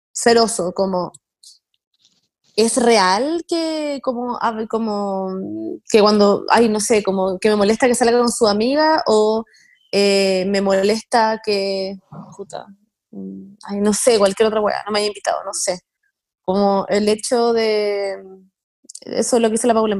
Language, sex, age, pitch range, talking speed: Spanish, female, 20-39, 195-235 Hz, 155 wpm